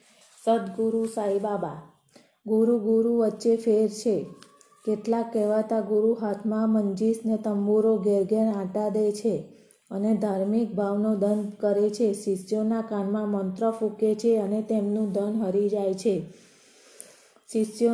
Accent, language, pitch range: native, Gujarati, 205-220 Hz